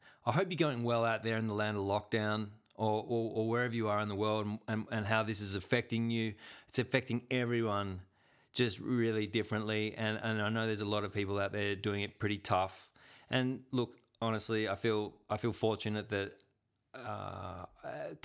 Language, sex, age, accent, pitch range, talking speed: English, male, 30-49, Australian, 105-125 Hz, 195 wpm